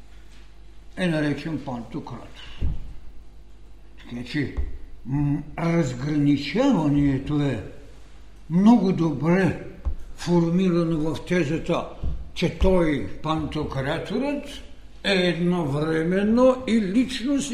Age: 60-79